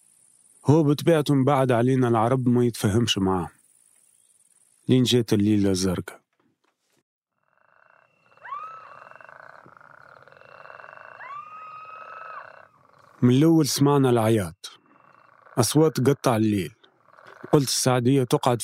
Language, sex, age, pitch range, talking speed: Arabic, male, 40-59, 115-145 Hz, 70 wpm